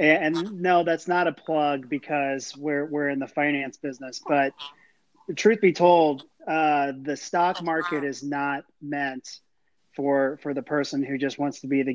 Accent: American